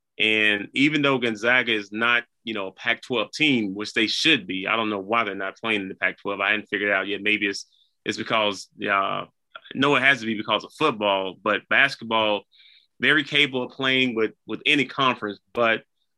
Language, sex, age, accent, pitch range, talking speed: English, male, 30-49, American, 105-120 Hz, 200 wpm